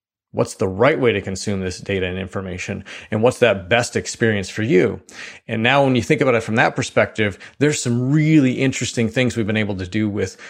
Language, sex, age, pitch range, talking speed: English, male, 30-49, 105-130 Hz, 215 wpm